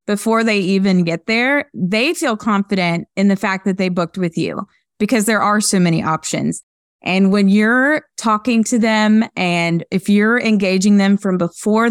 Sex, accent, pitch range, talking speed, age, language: female, American, 180-230 Hz, 175 wpm, 20-39, English